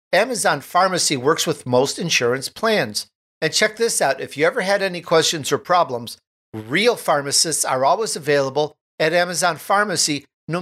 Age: 50-69